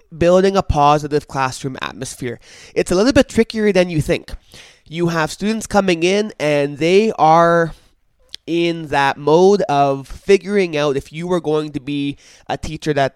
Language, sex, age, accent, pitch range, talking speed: English, male, 20-39, American, 140-170 Hz, 165 wpm